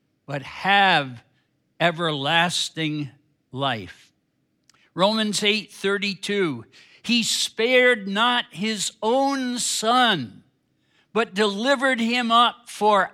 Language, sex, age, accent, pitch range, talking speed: English, male, 60-79, American, 160-230 Hz, 80 wpm